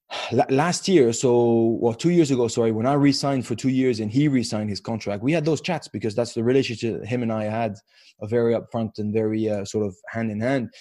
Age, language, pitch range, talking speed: 20-39, English, 115-150 Hz, 230 wpm